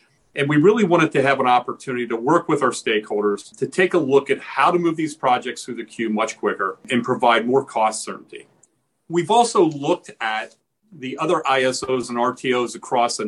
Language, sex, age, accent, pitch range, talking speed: English, male, 40-59, American, 120-165 Hz, 200 wpm